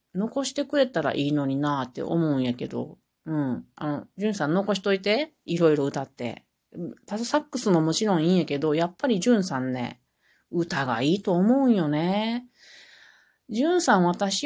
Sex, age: female, 40-59